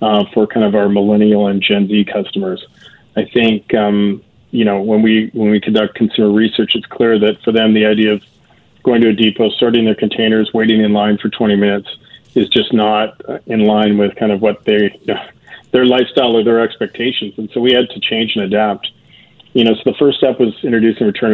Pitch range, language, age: 105-115 Hz, English, 40-59